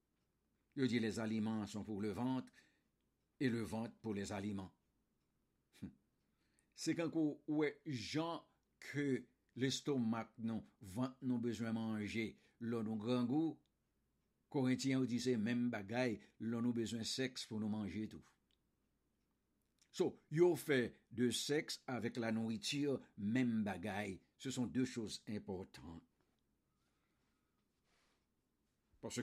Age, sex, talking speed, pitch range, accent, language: 60-79, male, 115 wpm, 110-130 Hz, Canadian, English